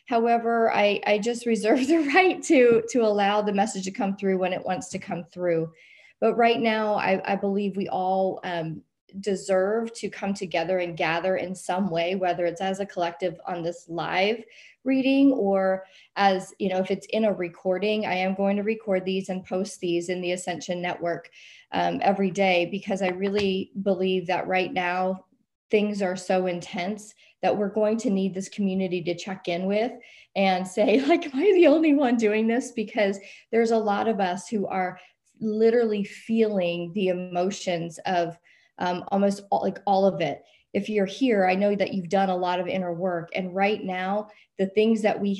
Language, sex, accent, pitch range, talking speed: English, female, American, 185-215 Hz, 190 wpm